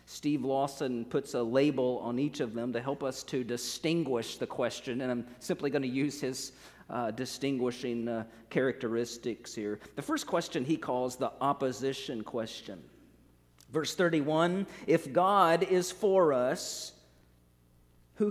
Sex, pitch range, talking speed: male, 130-185 Hz, 145 wpm